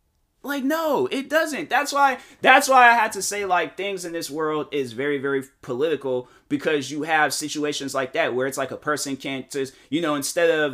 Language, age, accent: English, 30-49, American